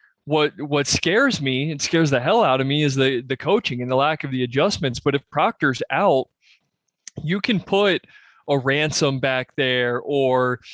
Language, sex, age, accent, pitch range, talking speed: English, male, 20-39, American, 130-155 Hz, 185 wpm